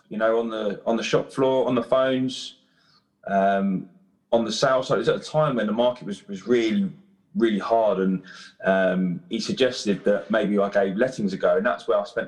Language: English